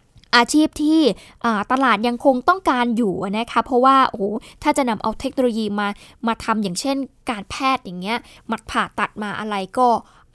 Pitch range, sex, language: 215-270 Hz, female, Thai